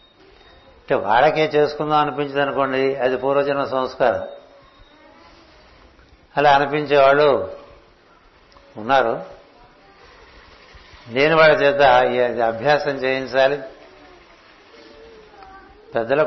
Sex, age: male, 60-79